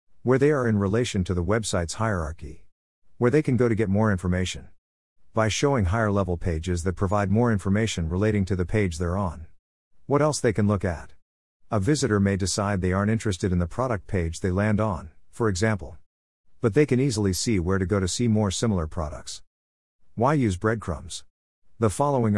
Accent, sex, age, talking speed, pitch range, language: American, male, 50-69, 190 wpm, 90-115 Hz, English